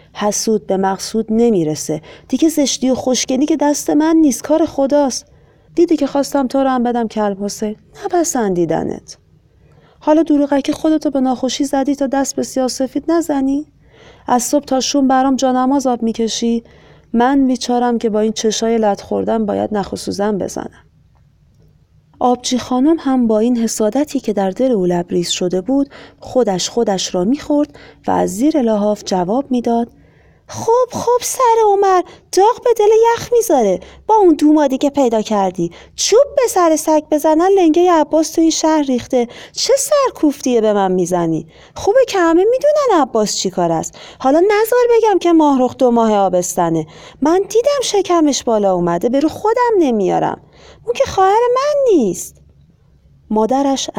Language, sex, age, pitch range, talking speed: Persian, female, 40-59, 215-315 Hz, 150 wpm